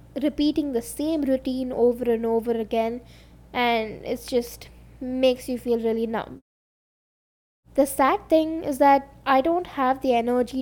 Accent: Indian